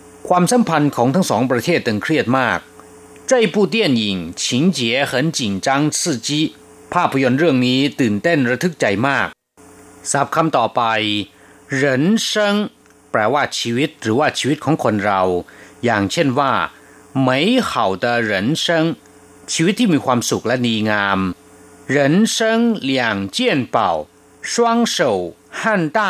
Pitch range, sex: 120-175 Hz, male